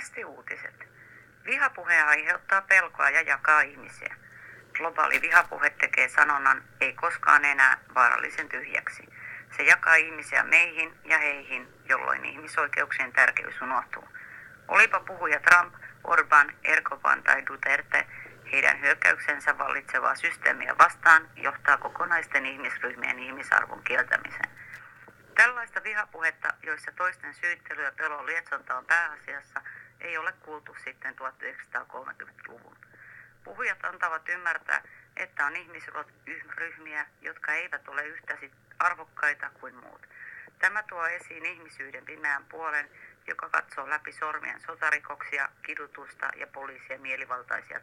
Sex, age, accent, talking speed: female, 30-49, native, 105 wpm